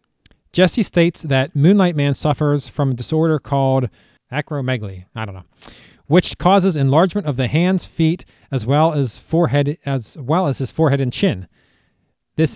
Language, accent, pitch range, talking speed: English, American, 125-160 Hz, 160 wpm